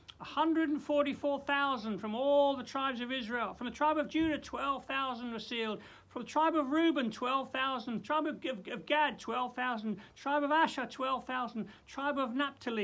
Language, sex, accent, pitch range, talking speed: English, male, British, 170-270 Hz, 185 wpm